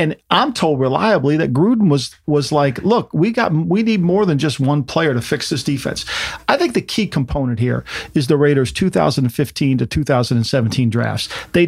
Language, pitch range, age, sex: English, 130-165 Hz, 50-69, male